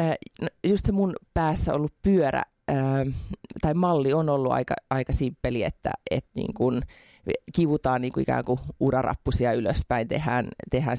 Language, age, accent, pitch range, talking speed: Finnish, 30-49, native, 120-150 Hz, 165 wpm